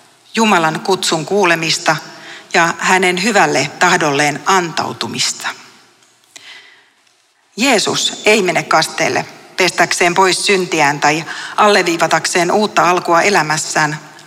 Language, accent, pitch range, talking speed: Finnish, native, 165-200 Hz, 85 wpm